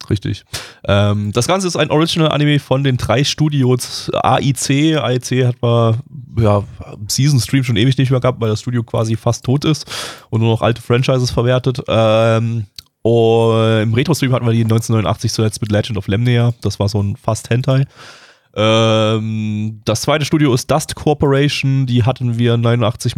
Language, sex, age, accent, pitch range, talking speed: German, male, 20-39, German, 110-135 Hz, 170 wpm